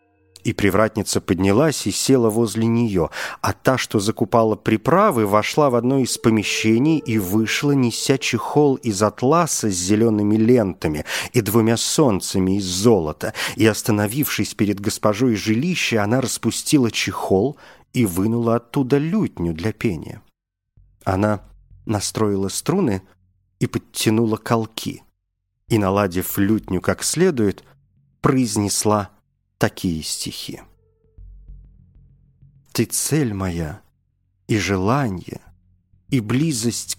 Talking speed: 105 wpm